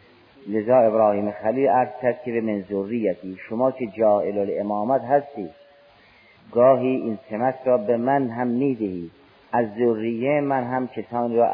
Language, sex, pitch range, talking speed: Persian, male, 100-125 Hz, 135 wpm